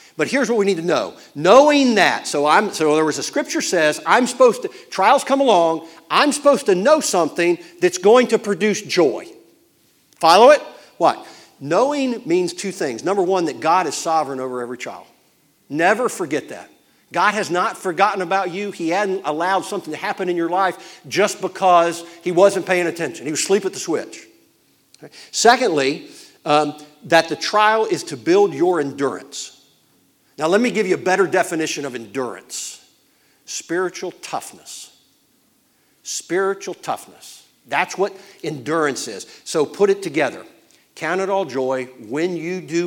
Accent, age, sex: American, 50-69, male